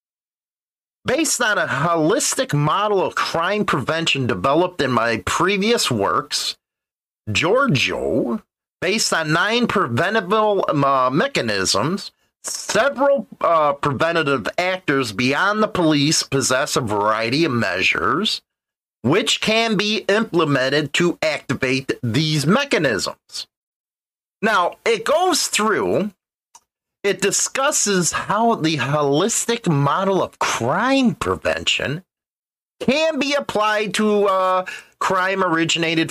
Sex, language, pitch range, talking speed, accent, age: male, English, 140-215 Hz, 100 wpm, American, 40-59